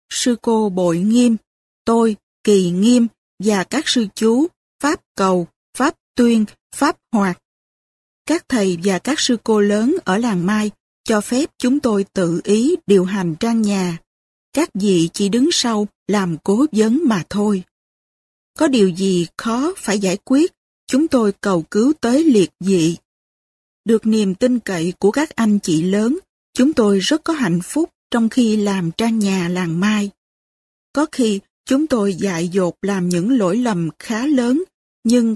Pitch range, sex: 195-255 Hz, female